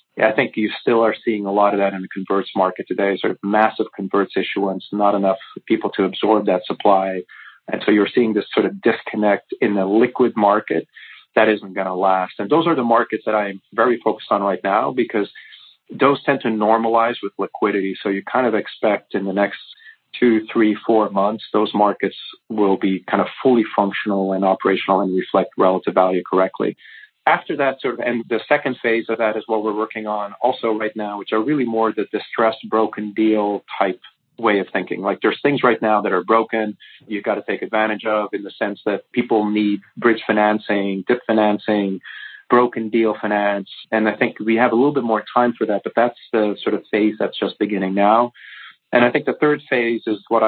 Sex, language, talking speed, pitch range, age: male, English, 210 wpm, 100-115 Hz, 40-59